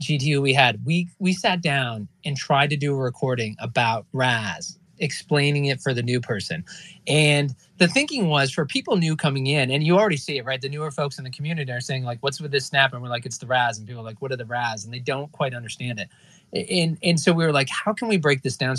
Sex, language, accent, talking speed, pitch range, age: male, English, American, 255 wpm, 130-165 Hz, 20-39